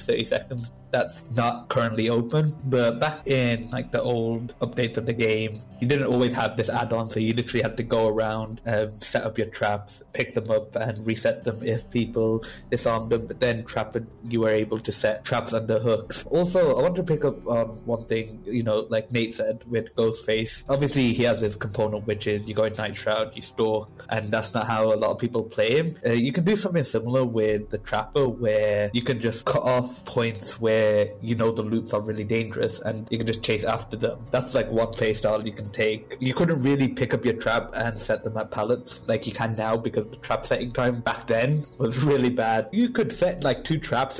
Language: English